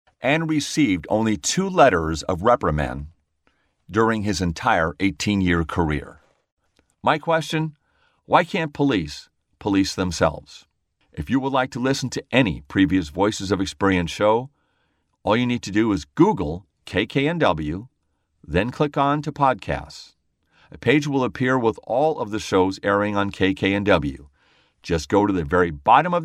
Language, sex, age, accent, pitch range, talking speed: English, male, 50-69, American, 85-115 Hz, 145 wpm